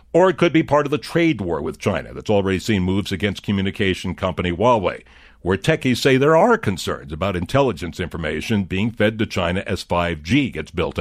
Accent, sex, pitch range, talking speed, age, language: American, male, 95-145 Hz, 195 wpm, 60-79, English